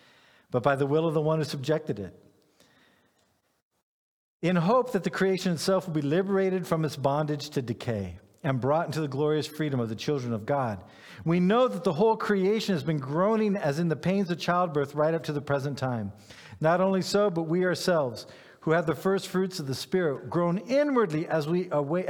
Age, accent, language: 50-69, American, English